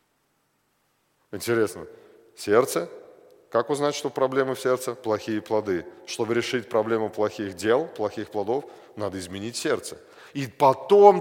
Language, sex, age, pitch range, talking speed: Russian, male, 40-59, 120-175 Hz, 120 wpm